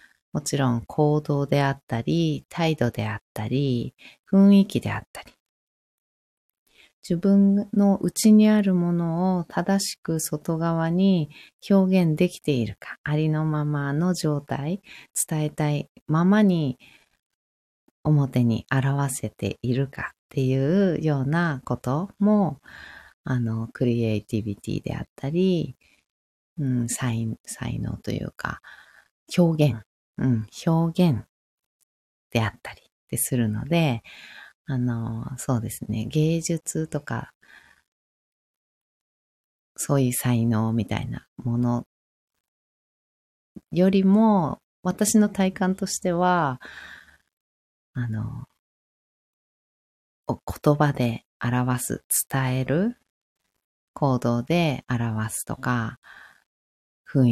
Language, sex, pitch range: Japanese, female, 120-170 Hz